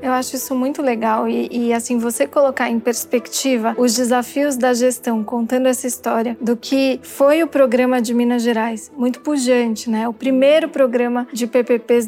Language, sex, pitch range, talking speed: Portuguese, female, 245-285 Hz, 175 wpm